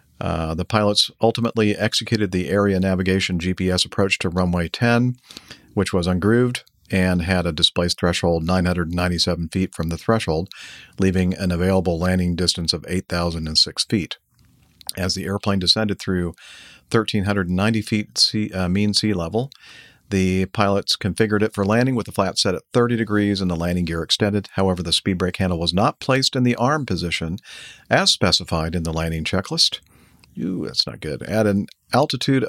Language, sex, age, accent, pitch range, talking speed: English, male, 50-69, American, 90-105 Hz, 160 wpm